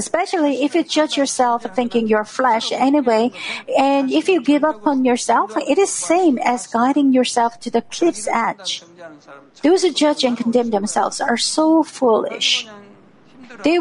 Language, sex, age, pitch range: Korean, female, 50-69, 230-300 Hz